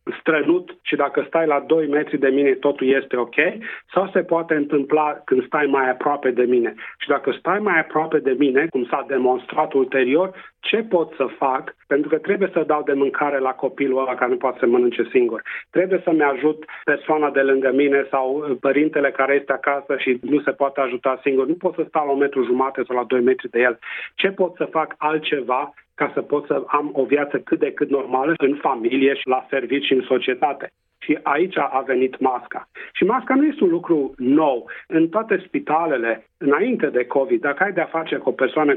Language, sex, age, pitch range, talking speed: English, male, 40-59, 135-170 Hz, 210 wpm